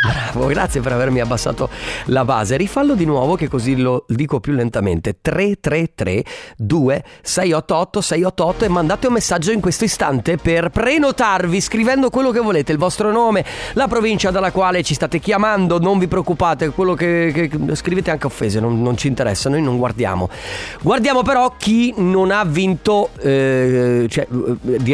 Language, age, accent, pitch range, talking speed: Italian, 30-49, native, 130-200 Hz, 155 wpm